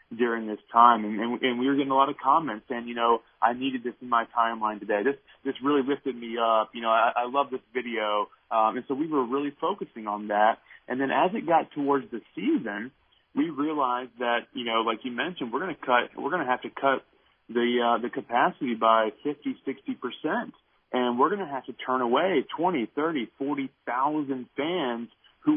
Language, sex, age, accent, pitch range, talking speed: English, male, 30-49, American, 115-145 Hz, 205 wpm